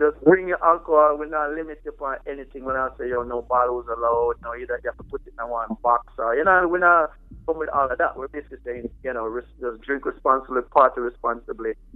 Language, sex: English, male